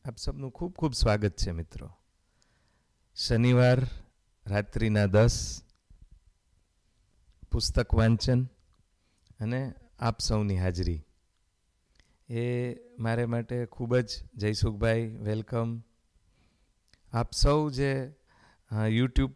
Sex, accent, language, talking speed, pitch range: male, native, Gujarati, 80 wpm, 100-120 Hz